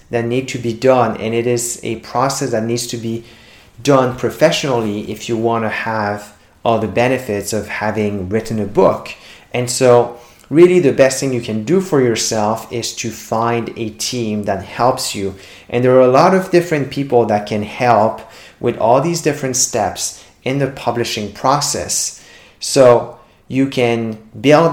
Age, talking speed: 30-49, 175 wpm